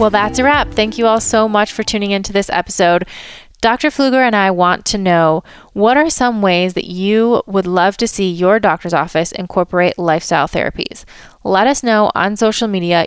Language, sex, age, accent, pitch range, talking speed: English, female, 20-39, American, 180-235 Hz, 195 wpm